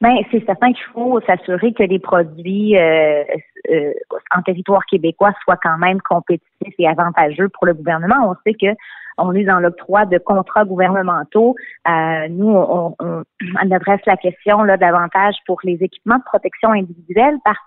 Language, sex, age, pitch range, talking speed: French, female, 30-49, 180-230 Hz, 175 wpm